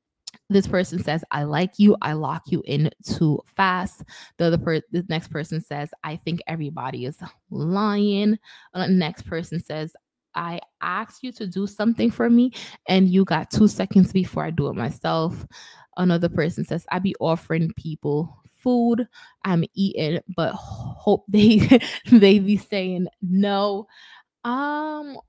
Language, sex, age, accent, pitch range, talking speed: English, female, 20-39, American, 155-195 Hz, 155 wpm